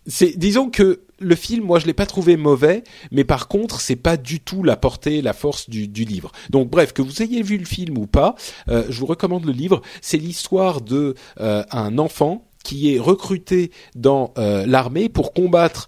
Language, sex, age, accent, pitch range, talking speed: French, male, 40-59, French, 115-165 Hz, 210 wpm